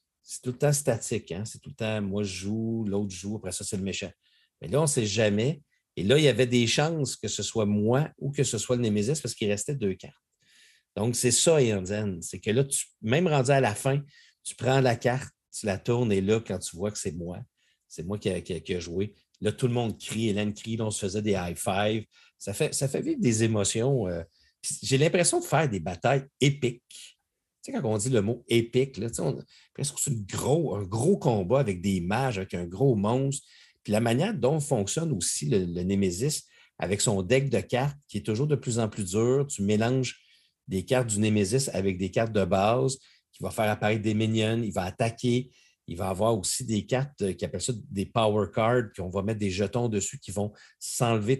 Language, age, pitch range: French, 50-69, 100-130 Hz